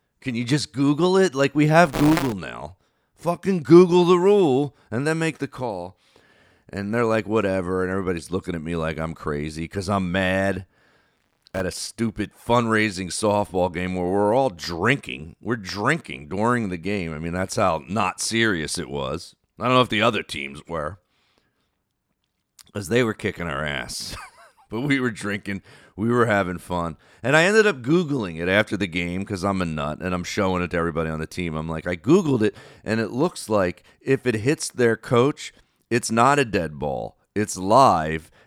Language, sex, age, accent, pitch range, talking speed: English, male, 40-59, American, 90-120 Hz, 190 wpm